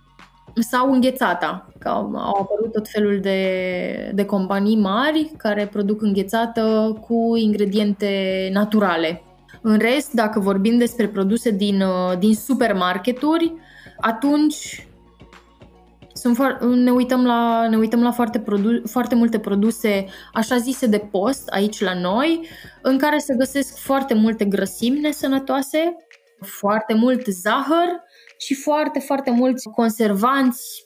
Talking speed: 115 wpm